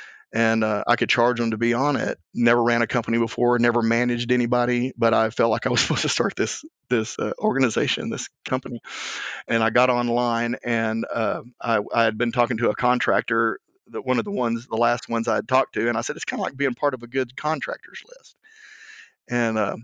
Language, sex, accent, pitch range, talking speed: English, male, American, 115-140 Hz, 220 wpm